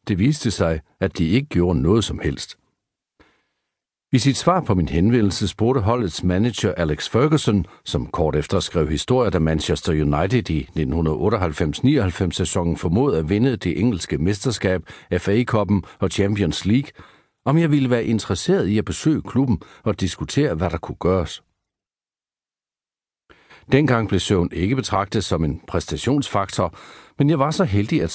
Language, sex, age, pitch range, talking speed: Danish, male, 60-79, 85-115 Hz, 150 wpm